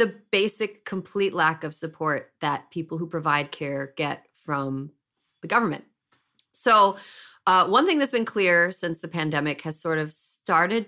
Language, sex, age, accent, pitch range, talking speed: English, female, 30-49, American, 160-210 Hz, 160 wpm